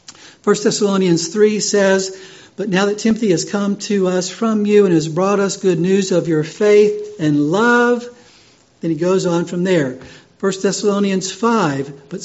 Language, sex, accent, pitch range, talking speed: English, male, American, 165-210 Hz, 170 wpm